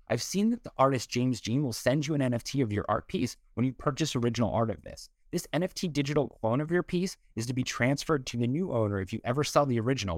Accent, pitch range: American, 100-140 Hz